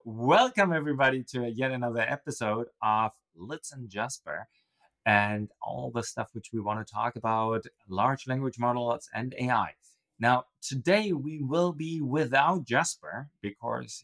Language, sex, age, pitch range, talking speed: English, male, 30-49, 110-145 Hz, 140 wpm